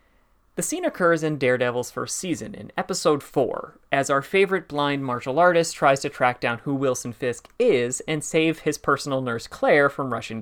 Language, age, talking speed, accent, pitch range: English, 30-49, 185 wpm, American, 130-175 Hz